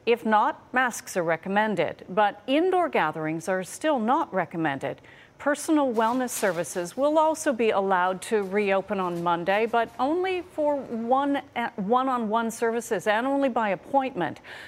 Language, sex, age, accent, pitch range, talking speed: English, female, 40-59, American, 170-245 Hz, 130 wpm